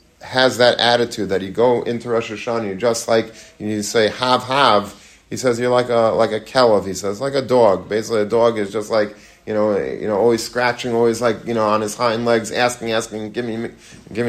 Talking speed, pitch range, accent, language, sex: 235 wpm, 110-125 Hz, American, English, male